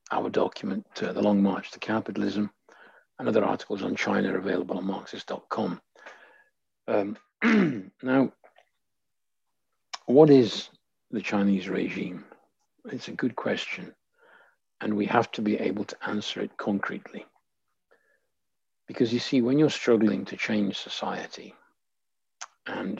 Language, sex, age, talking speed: English, male, 60-79, 125 wpm